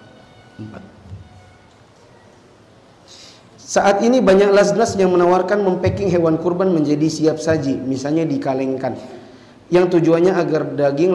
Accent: native